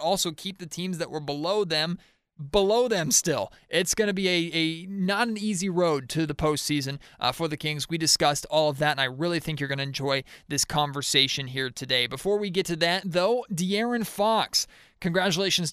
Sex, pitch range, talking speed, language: male, 145-185 Hz, 205 wpm, English